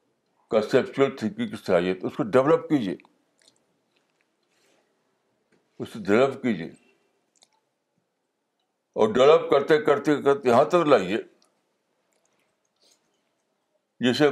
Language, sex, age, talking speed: Urdu, male, 60-79, 75 wpm